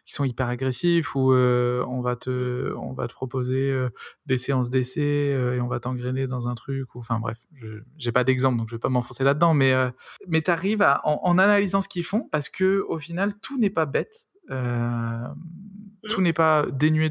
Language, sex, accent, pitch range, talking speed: French, male, French, 120-150 Hz, 205 wpm